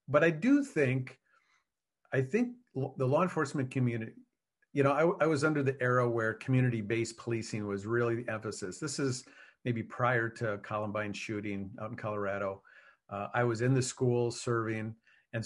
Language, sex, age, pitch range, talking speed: English, male, 50-69, 110-140 Hz, 165 wpm